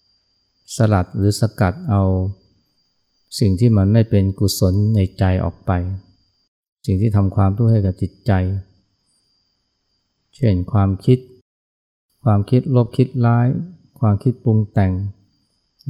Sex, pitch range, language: male, 95-115 Hz, Thai